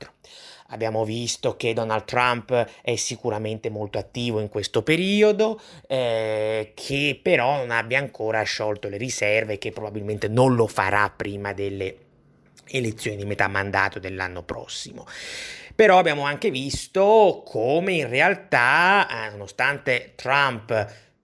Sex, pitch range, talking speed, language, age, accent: male, 110-140 Hz, 125 wpm, Italian, 30-49, native